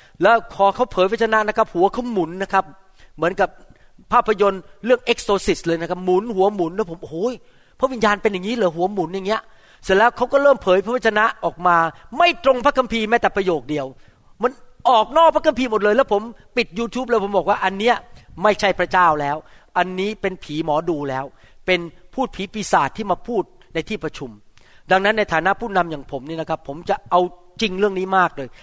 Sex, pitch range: male, 175-235 Hz